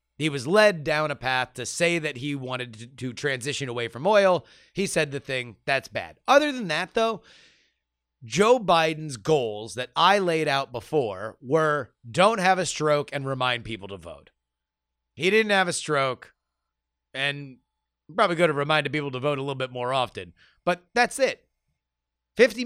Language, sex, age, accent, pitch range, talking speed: English, male, 30-49, American, 120-185 Hz, 175 wpm